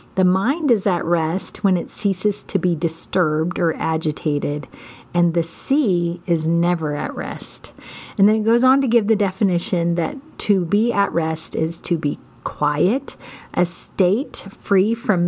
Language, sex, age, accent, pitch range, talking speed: English, female, 40-59, American, 170-220 Hz, 165 wpm